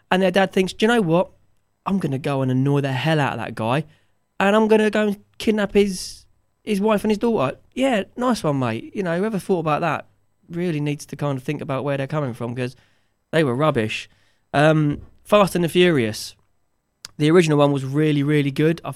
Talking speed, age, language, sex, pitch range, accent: 225 wpm, 20-39, English, male, 135-175 Hz, British